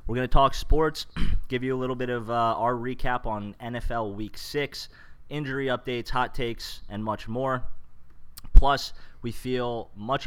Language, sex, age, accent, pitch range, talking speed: English, male, 20-39, American, 90-115 Hz, 170 wpm